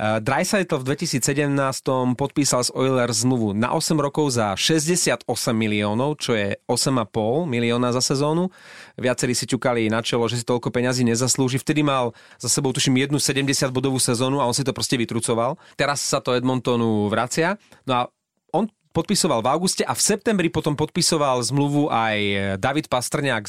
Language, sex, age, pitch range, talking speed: Slovak, male, 30-49, 120-160 Hz, 160 wpm